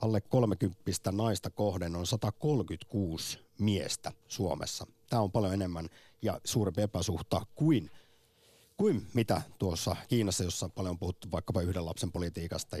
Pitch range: 90-125 Hz